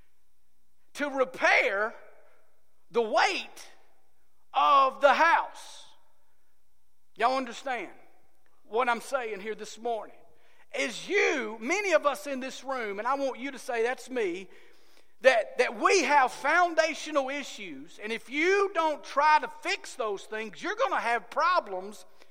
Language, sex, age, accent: English, male, 40-59, American